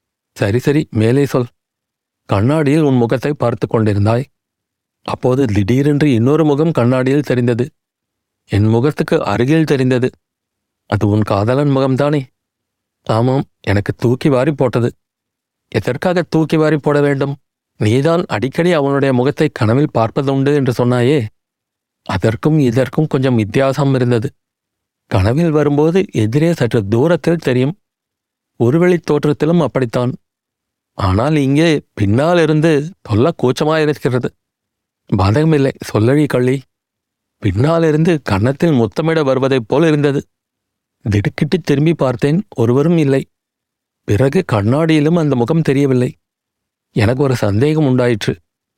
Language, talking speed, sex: Tamil, 100 wpm, male